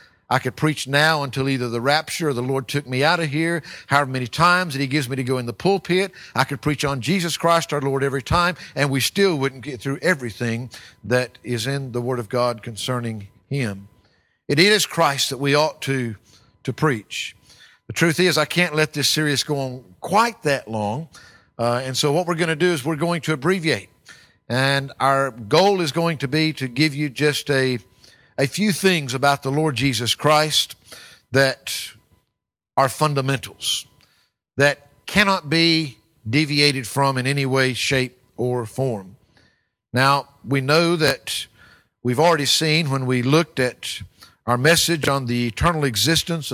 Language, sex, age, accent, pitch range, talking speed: English, male, 50-69, American, 125-155 Hz, 180 wpm